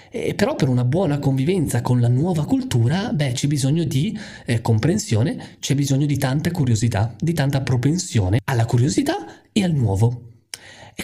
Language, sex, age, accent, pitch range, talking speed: Italian, male, 20-39, native, 120-155 Hz, 160 wpm